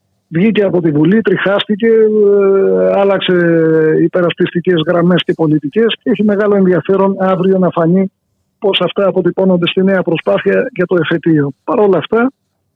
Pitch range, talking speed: 165-195 Hz, 135 wpm